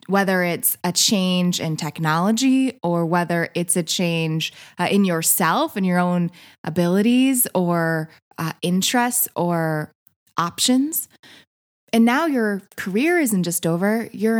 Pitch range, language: 175-230 Hz, English